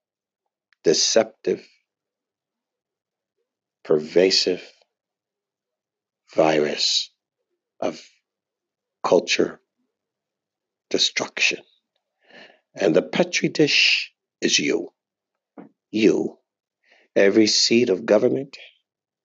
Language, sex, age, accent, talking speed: English, male, 60-79, American, 55 wpm